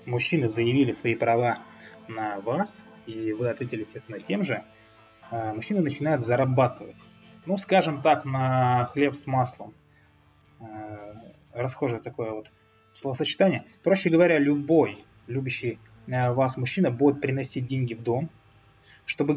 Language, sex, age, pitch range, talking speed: Russian, male, 20-39, 110-145 Hz, 120 wpm